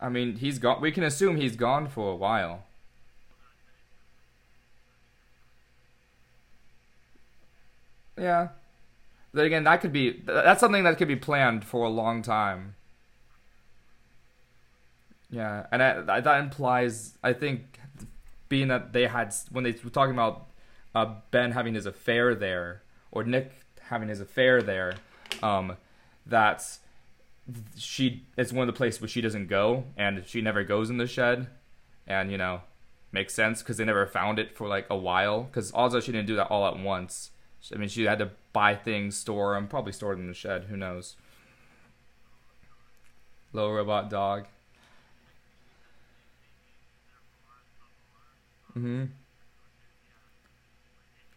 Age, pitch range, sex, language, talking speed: 20-39, 100-125 Hz, male, English, 140 wpm